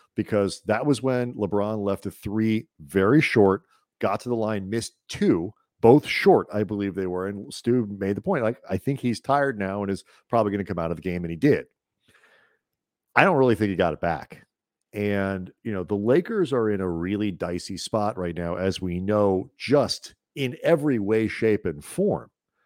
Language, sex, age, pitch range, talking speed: English, male, 50-69, 95-115 Hz, 205 wpm